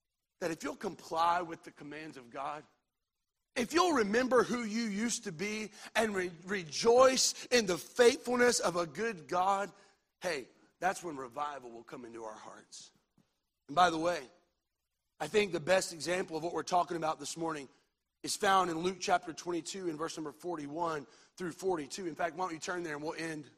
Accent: American